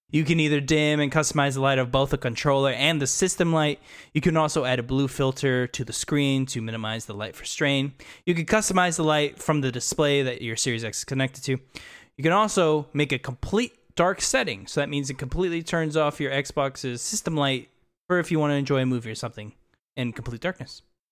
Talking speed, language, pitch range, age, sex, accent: 225 wpm, English, 125-155 Hz, 20-39, male, American